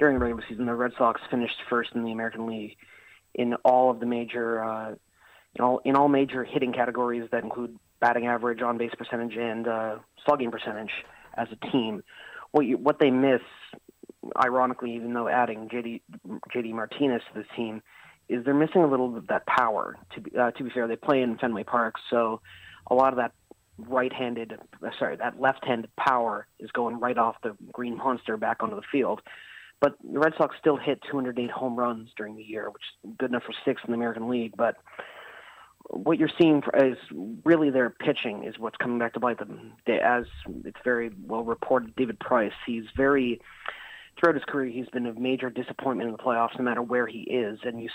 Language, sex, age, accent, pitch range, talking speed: English, male, 30-49, American, 115-130 Hz, 200 wpm